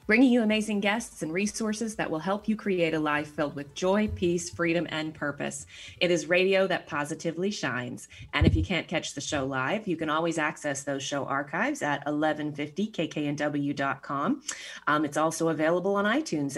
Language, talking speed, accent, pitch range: English, 175 wpm, American, 150-200 Hz